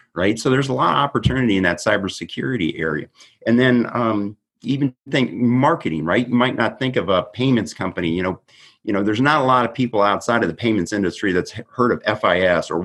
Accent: American